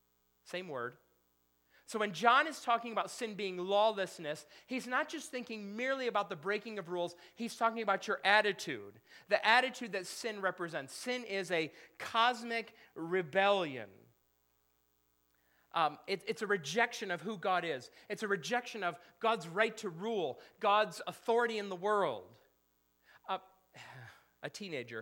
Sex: male